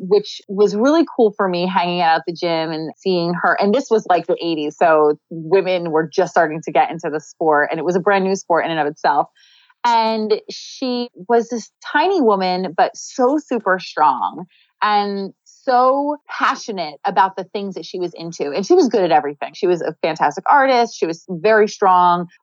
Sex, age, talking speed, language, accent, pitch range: female, 30-49, 205 wpm, English, American, 170-215 Hz